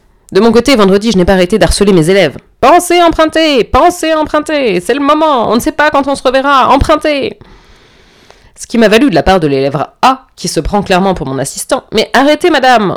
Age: 20-39